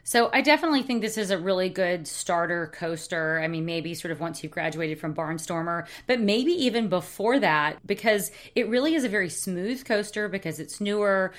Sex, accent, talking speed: female, American, 195 wpm